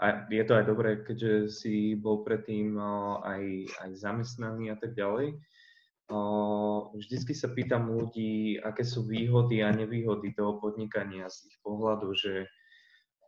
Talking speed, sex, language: 140 wpm, male, Slovak